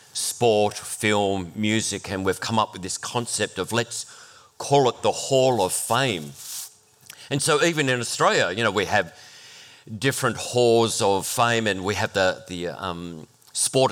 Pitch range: 100-125 Hz